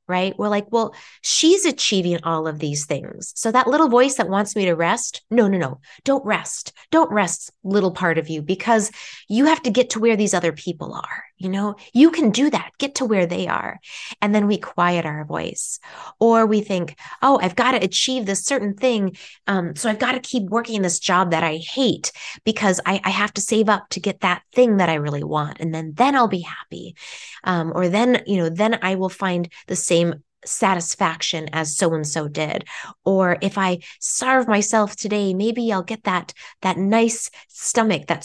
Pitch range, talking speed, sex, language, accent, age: 175-240 Hz, 205 wpm, female, English, American, 20-39